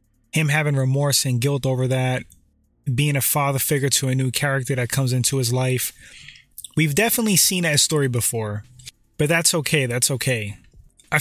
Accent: American